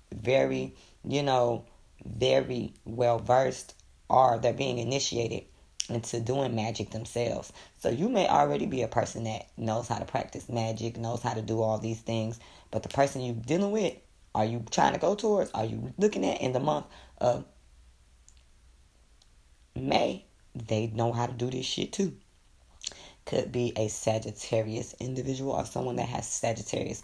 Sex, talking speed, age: female, 160 wpm, 20-39